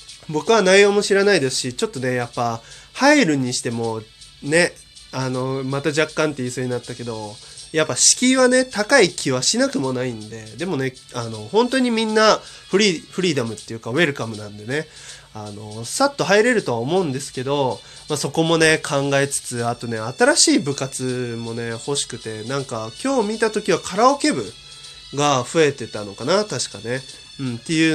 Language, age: Japanese, 20-39